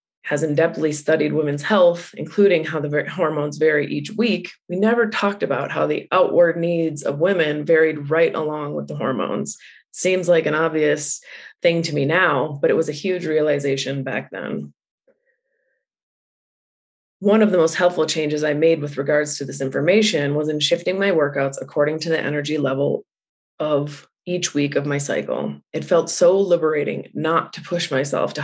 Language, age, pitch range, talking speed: English, 20-39, 145-175 Hz, 175 wpm